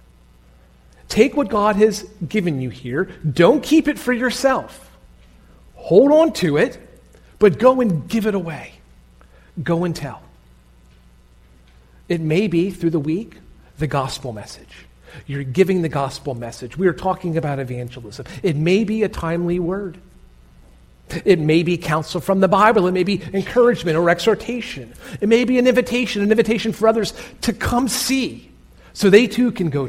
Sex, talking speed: male, 160 wpm